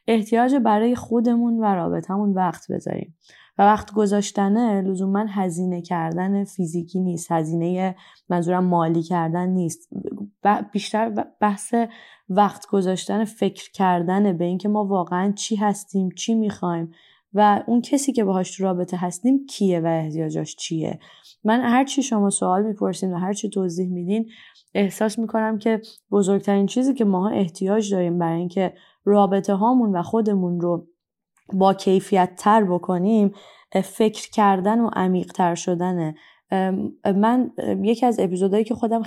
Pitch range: 180-215 Hz